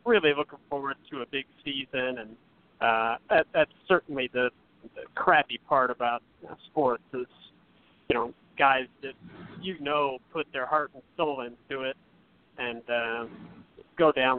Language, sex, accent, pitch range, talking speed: English, male, American, 125-145 Hz, 145 wpm